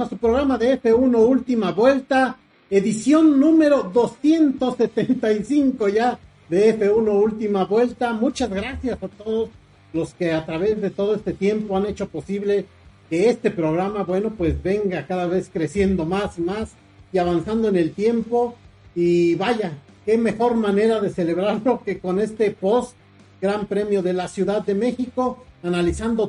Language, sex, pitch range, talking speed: Spanish, male, 175-235 Hz, 150 wpm